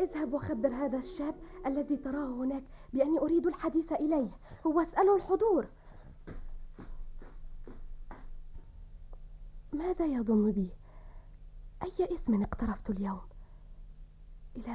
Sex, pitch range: female, 200-310 Hz